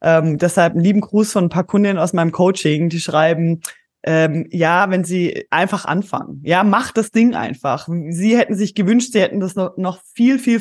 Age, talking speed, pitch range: 20-39, 205 wpm, 165-220 Hz